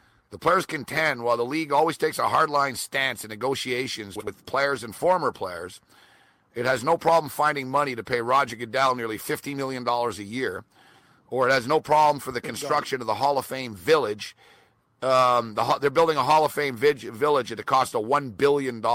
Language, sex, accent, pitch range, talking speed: English, male, American, 120-150 Hz, 195 wpm